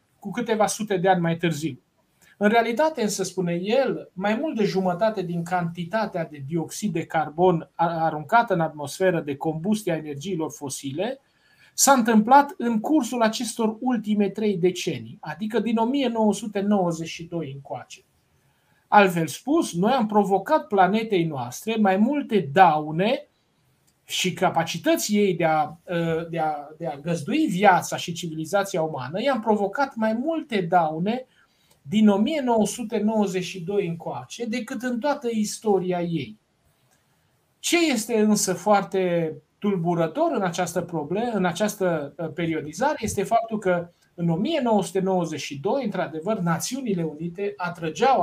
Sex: male